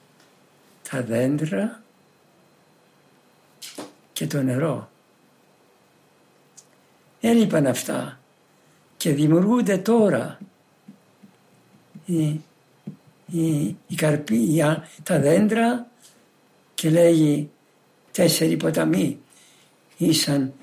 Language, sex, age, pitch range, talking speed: Greek, male, 60-79, 145-200 Hz, 60 wpm